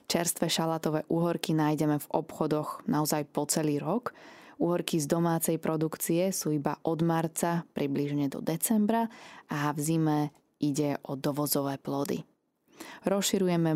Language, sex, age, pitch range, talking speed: Slovak, female, 20-39, 150-175 Hz, 125 wpm